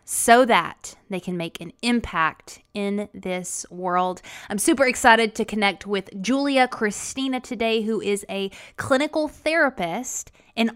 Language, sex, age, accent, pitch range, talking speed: English, female, 20-39, American, 175-215 Hz, 140 wpm